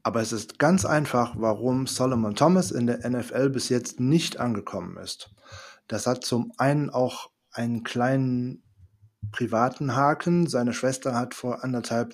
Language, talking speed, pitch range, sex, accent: German, 150 wpm, 115-150 Hz, male, German